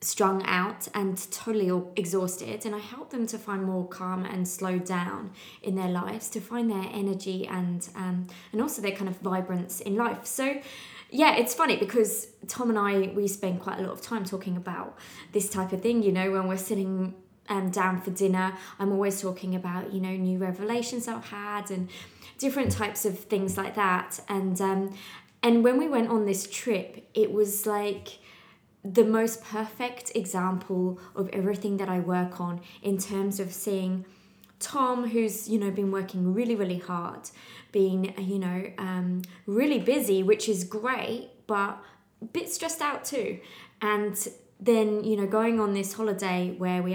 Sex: female